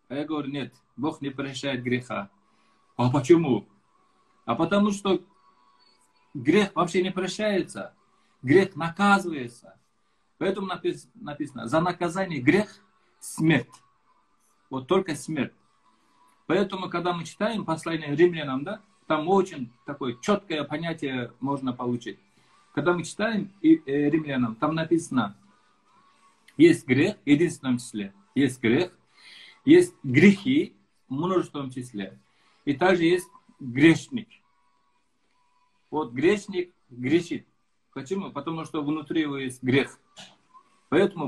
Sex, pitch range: male, 130-190 Hz